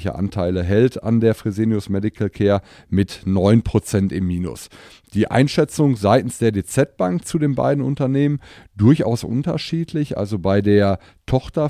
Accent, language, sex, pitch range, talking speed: German, German, male, 100-120 Hz, 135 wpm